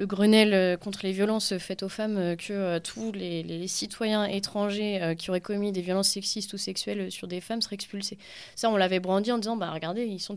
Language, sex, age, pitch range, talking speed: French, female, 20-39, 190-225 Hz, 225 wpm